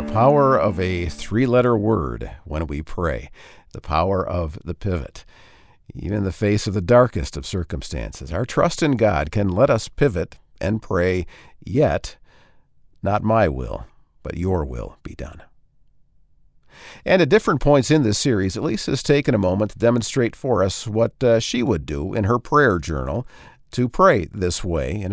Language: English